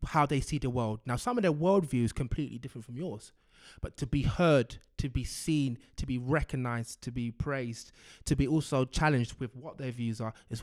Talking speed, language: 215 wpm, English